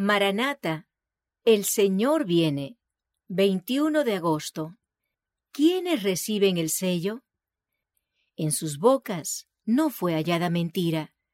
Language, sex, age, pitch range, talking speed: English, female, 50-69, 170-225 Hz, 95 wpm